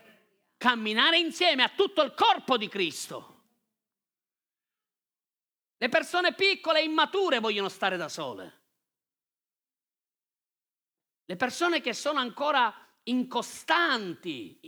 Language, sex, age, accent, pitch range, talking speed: Italian, male, 40-59, native, 220-305 Hz, 95 wpm